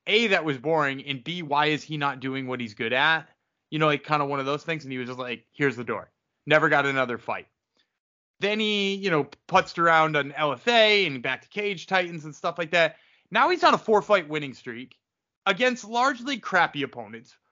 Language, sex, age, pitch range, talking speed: English, male, 30-49, 145-200 Hz, 220 wpm